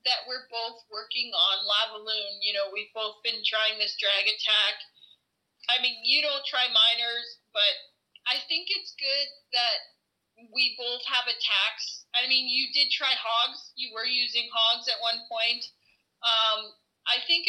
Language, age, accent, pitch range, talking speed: English, 30-49, American, 215-260 Hz, 160 wpm